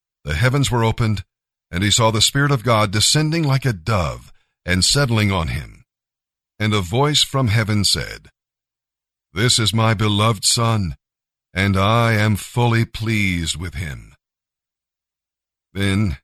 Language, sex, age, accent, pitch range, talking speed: English, male, 50-69, American, 95-120 Hz, 140 wpm